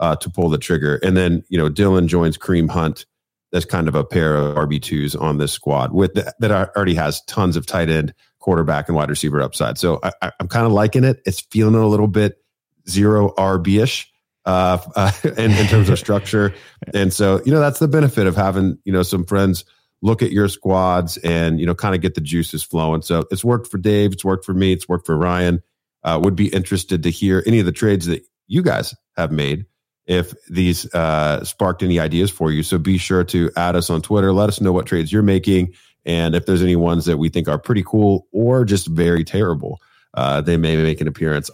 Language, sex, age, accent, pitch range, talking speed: English, male, 40-59, American, 85-105 Hz, 230 wpm